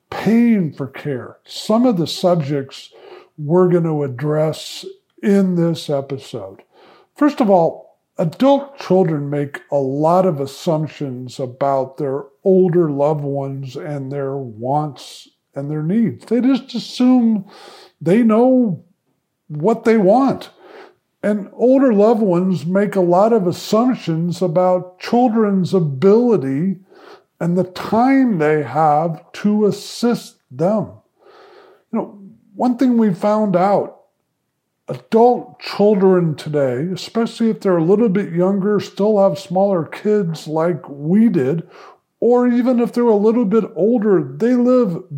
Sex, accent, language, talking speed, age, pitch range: male, American, English, 130 wpm, 50-69, 155-225 Hz